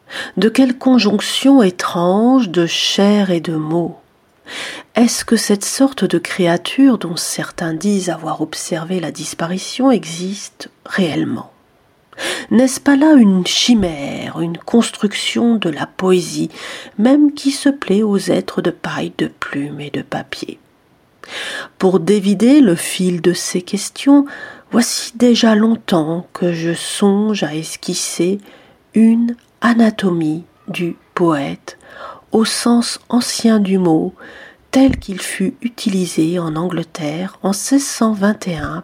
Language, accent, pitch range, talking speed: French, French, 170-225 Hz, 125 wpm